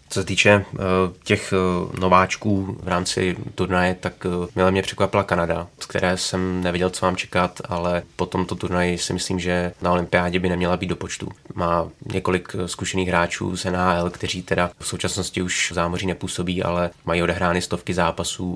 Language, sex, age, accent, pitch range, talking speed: Czech, male, 20-39, native, 90-95 Hz, 170 wpm